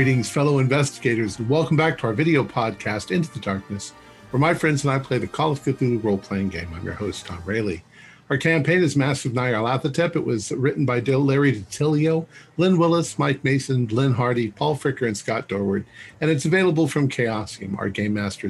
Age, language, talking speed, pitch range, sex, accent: 50-69, English, 200 wpm, 110-145 Hz, male, American